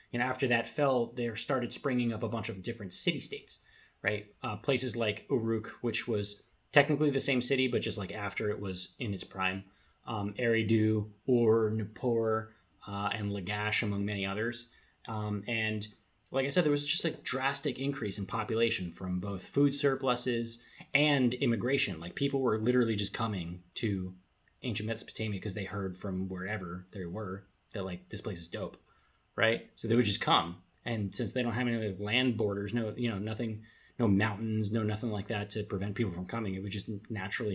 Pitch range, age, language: 100-125 Hz, 30-49, English